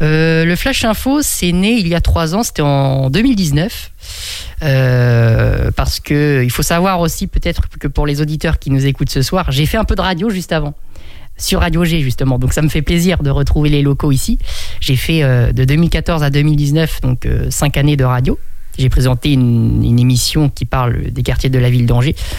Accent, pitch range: French, 125-155 Hz